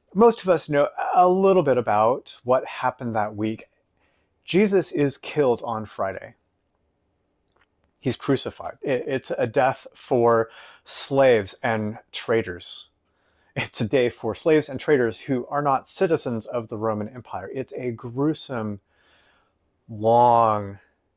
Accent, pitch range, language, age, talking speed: American, 95-135 Hz, English, 30-49, 130 wpm